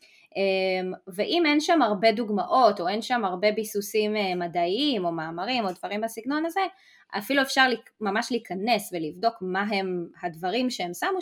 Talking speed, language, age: 145 wpm, Hebrew, 20-39